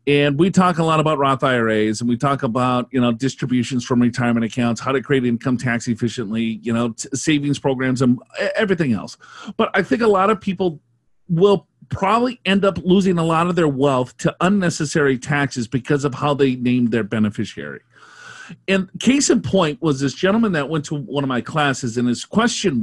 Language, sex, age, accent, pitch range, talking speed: English, male, 40-59, American, 125-180 Hz, 195 wpm